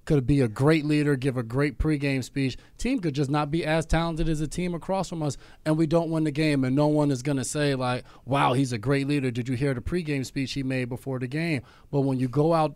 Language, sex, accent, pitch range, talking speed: English, male, American, 125-145 Hz, 270 wpm